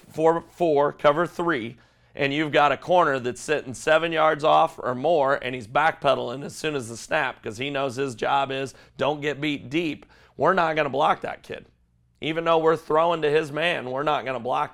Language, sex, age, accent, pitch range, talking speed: English, male, 40-59, American, 125-155 Hz, 215 wpm